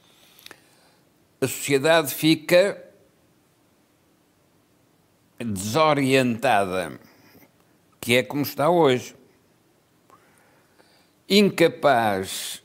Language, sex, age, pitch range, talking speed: Portuguese, male, 60-79, 130-165 Hz, 45 wpm